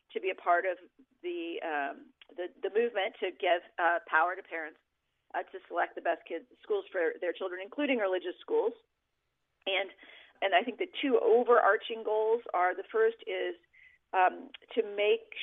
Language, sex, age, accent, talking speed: English, female, 40-59, American, 170 wpm